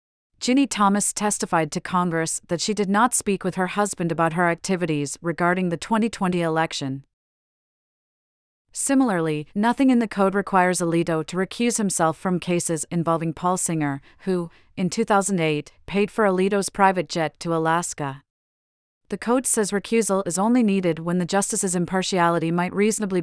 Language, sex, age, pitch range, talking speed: English, female, 40-59, 165-195 Hz, 150 wpm